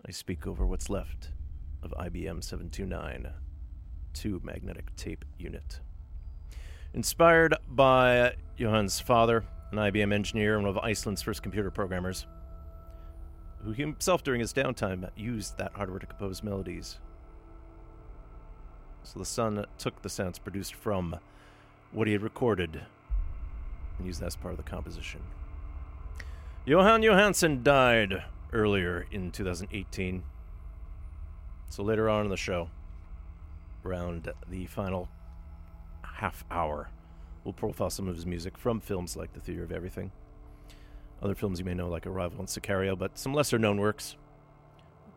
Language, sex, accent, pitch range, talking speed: English, male, American, 80-105 Hz, 130 wpm